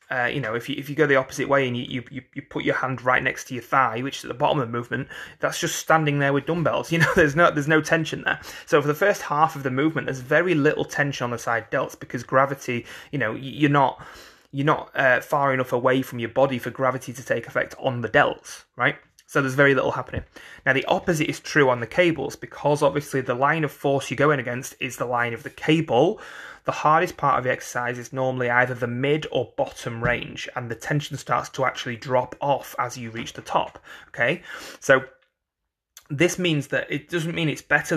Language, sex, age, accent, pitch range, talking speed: English, male, 30-49, British, 125-145 Hz, 235 wpm